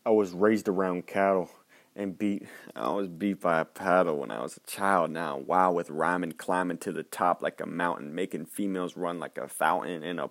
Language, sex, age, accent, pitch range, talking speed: English, male, 30-49, American, 90-130 Hz, 215 wpm